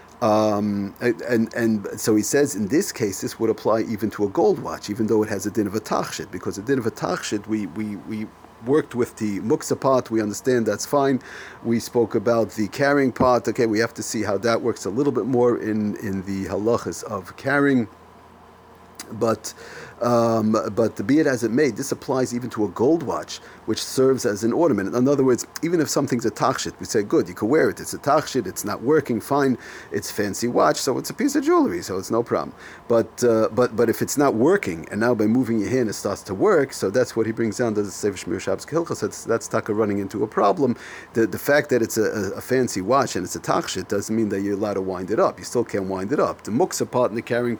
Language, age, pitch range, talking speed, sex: English, 40-59, 105-125 Hz, 240 wpm, male